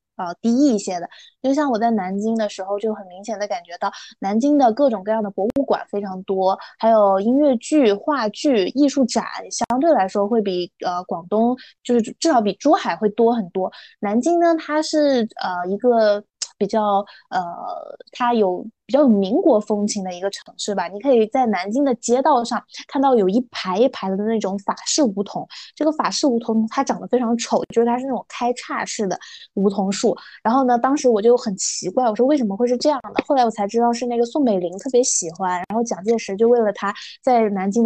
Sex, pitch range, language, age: female, 200-255 Hz, Chinese, 20-39